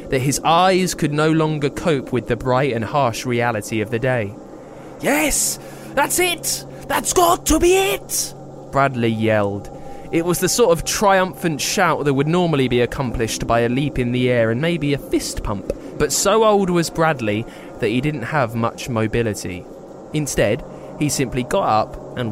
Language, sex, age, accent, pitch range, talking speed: English, male, 20-39, British, 120-170 Hz, 175 wpm